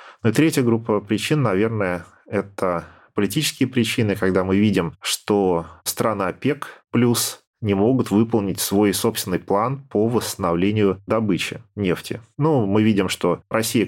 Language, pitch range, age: Russian, 95-110 Hz, 30-49